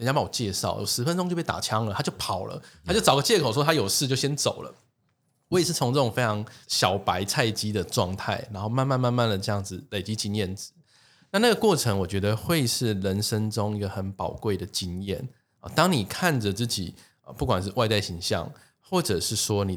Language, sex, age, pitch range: Chinese, male, 20-39, 100-140 Hz